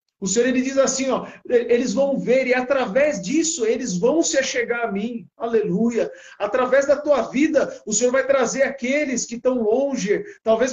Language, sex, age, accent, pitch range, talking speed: Portuguese, male, 50-69, Brazilian, 230-265 Hz, 180 wpm